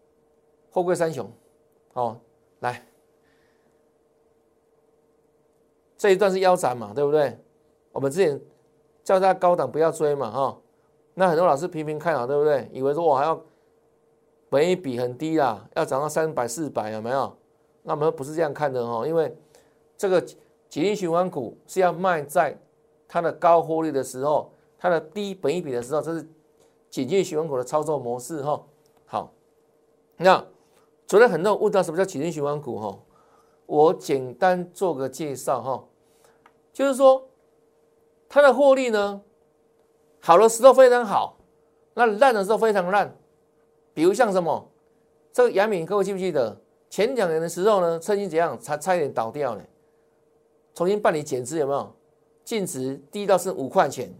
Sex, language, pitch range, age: male, Chinese, 150-185 Hz, 50-69